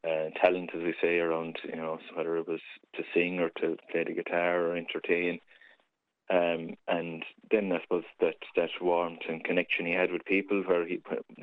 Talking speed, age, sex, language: 195 wpm, 20-39, male, English